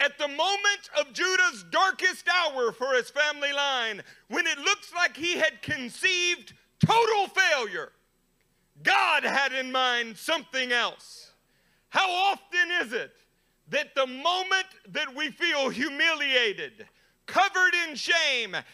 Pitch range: 250-330 Hz